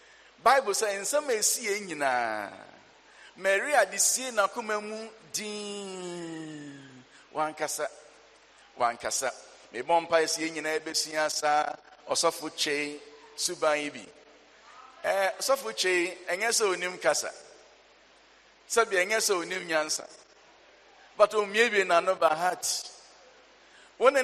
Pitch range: 155-215 Hz